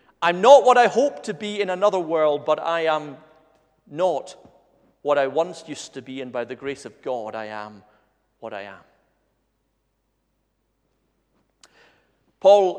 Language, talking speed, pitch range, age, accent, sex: English, 150 wpm, 130-170 Hz, 40-59, British, male